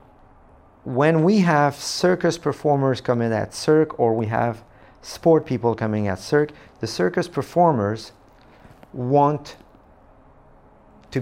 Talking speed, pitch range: 110 wpm, 105-135 Hz